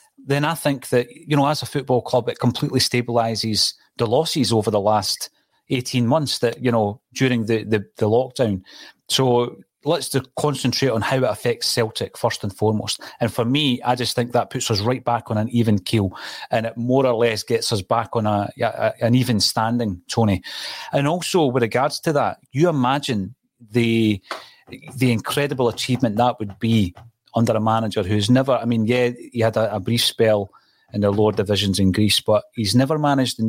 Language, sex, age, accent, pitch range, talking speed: English, male, 30-49, British, 105-125 Hz, 195 wpm